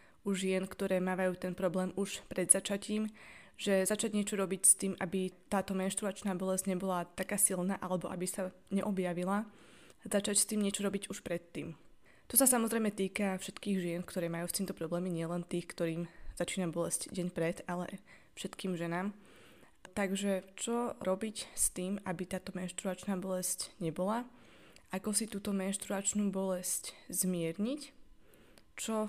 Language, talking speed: Slovak, 145 wpm